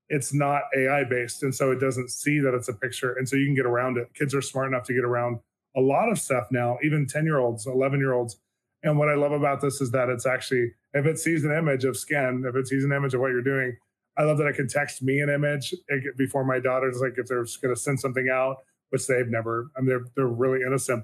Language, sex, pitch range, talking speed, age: English, male, 130-150 Hz, 255 wpm, 20-39